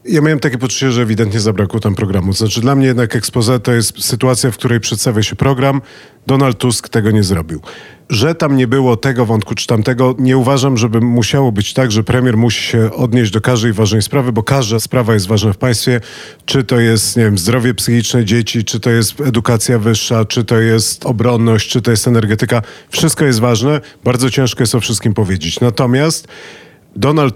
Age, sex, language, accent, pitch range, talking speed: 40-59, male, Polish, native, 110-135 Hz, 195 wpm